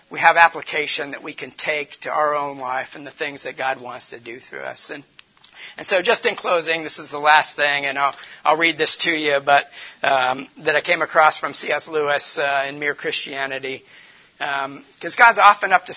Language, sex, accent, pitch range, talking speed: English, male, American, 140-170 Hz, 220 wpm